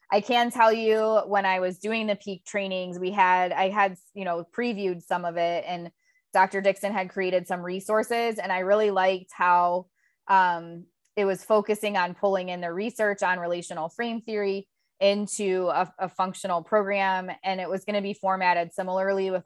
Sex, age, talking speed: female, 20-39, 180 wpm